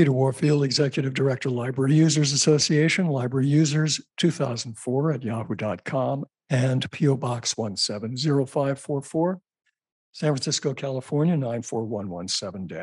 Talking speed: 90 wpm